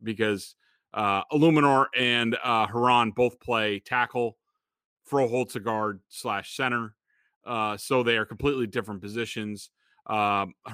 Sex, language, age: male, English, 30-49